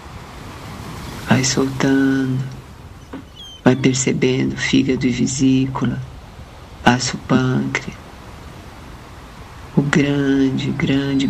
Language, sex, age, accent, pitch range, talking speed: Portuguese, female, 50-69, Brazilian, 110-135 Hz, 70 wpm